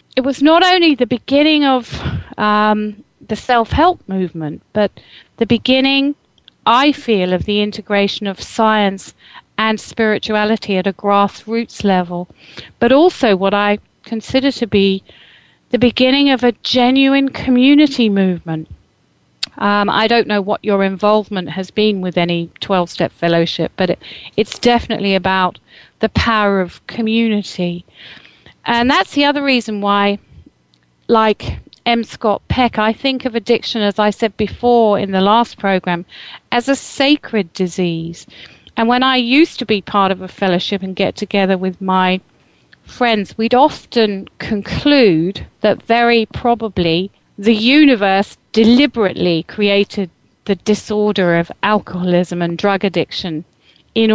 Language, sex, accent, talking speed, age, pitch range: English, female, British, 135 wpm, 40-59, 190-235 Hz